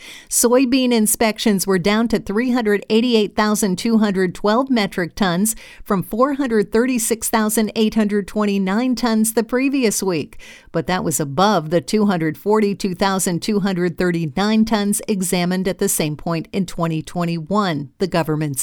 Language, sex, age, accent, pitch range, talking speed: English, female, 50-69, American, 180-225 Hz, 95 wpm